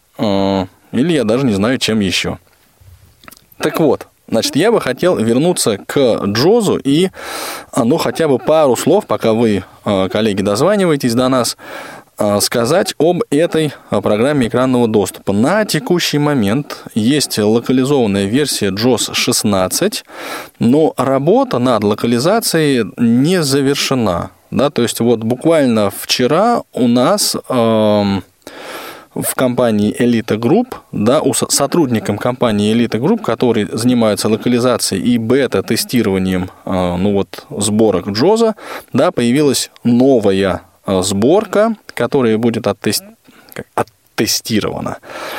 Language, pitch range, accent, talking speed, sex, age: Russian, 105-145 Hz, native, 105 wpm, male, 20-39